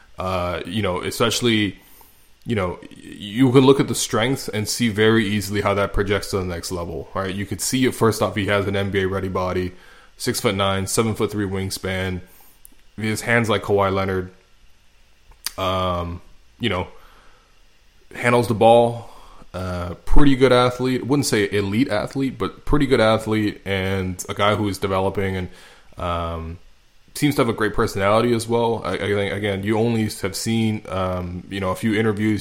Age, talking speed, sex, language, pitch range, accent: 20-39, 180 wpm, male, English, 95-110 Hz, American